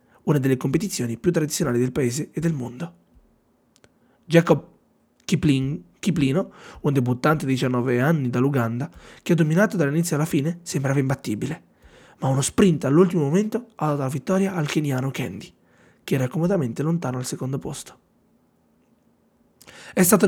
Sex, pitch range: male, 130-180 Hz